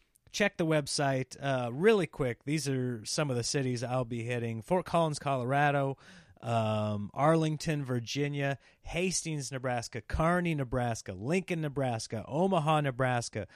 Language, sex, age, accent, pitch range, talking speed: English, male, 30-49, American, 110-155 Hz, 130 wpm